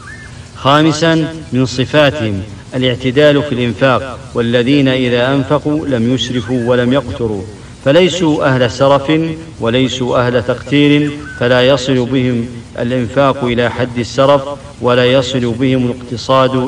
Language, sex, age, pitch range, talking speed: English, male, 50-69, 120-140 Hz, 110 wpm